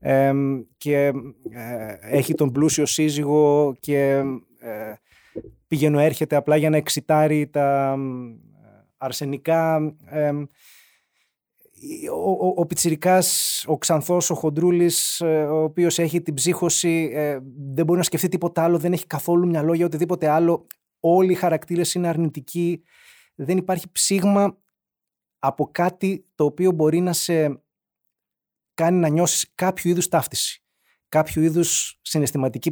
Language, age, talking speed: Greek, 20-39, 115 wpm